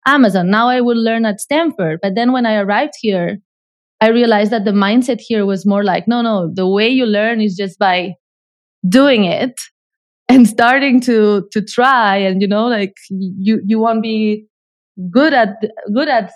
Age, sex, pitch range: 20-39, female, 200-235 Hz